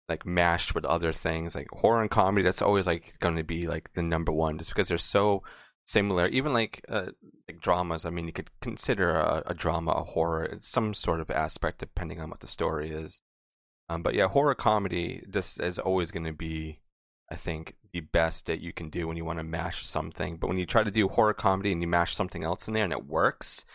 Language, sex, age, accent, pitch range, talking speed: English, male, 30-49, American, 80-100 Hz, 235 wpm